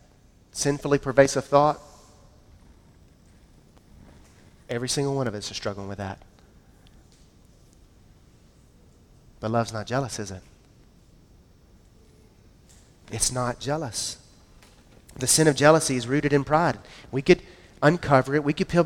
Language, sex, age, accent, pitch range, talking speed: English, male, 30-49, American, 110-155 Hz, 115 wpm